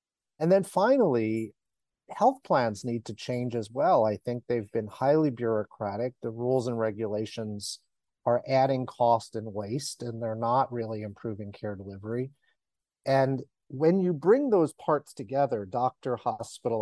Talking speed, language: 145 wpm, English